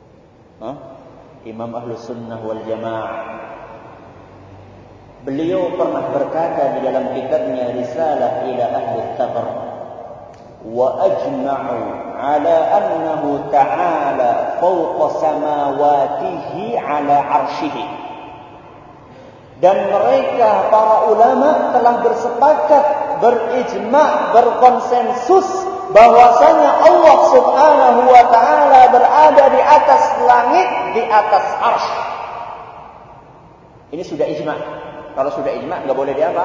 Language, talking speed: Malay, 85 wpm